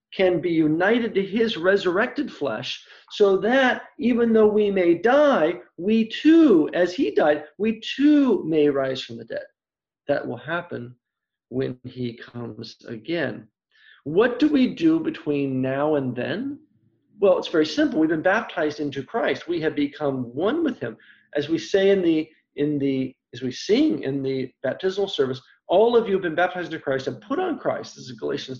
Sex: male